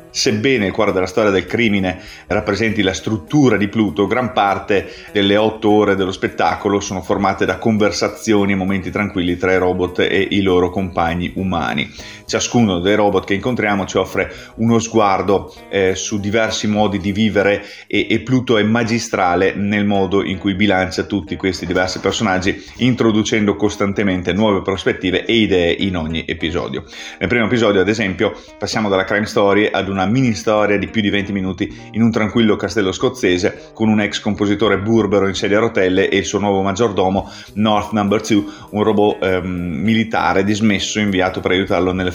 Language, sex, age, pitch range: Italian, male, 30-49, 95-110 Hz